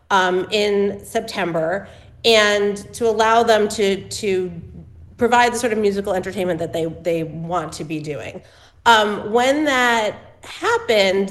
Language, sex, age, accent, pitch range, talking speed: English, female, 30-49, American, 185-230 Hz, 140 wpm